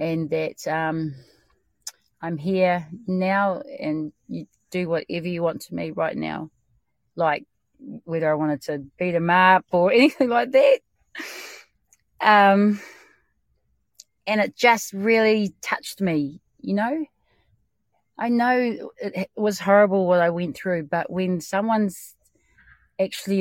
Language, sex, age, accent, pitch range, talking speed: English, female, 30-49, Australian, 165-215 Hz, 130 wpm